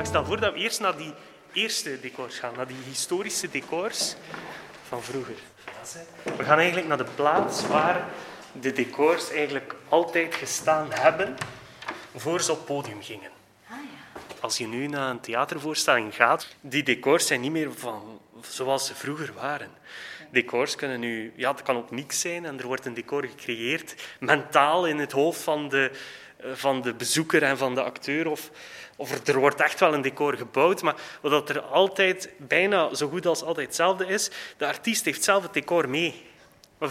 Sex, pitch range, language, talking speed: male, 135-165 Hz, Dutch, 175 wpm